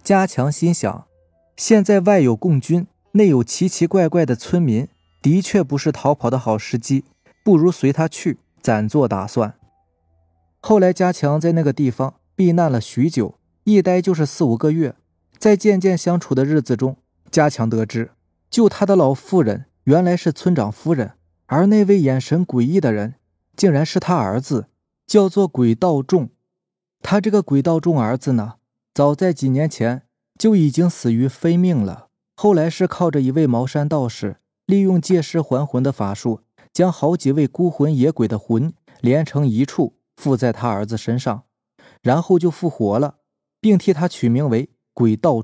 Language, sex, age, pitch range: Chinese, male, 20-39, 120-175 Hz